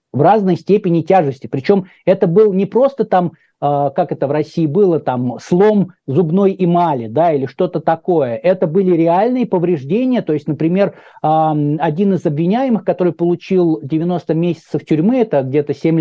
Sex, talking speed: male, 155 wpm